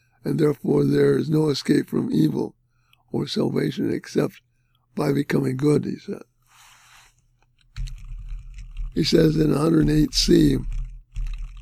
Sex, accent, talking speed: male, American, 105 wpm